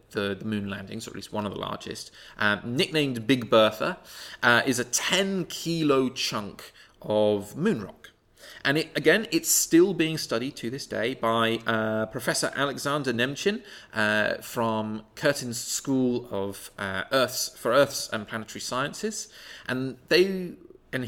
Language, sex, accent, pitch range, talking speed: English, male, British, 115-160 Hz, 155 wpm